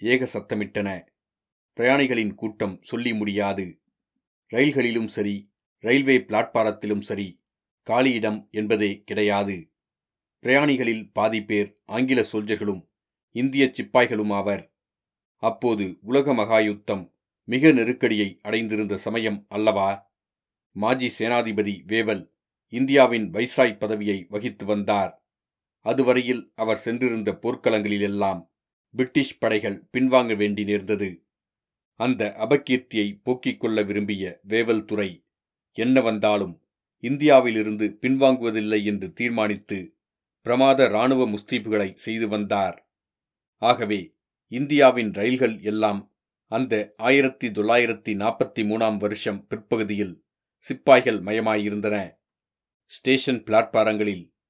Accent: native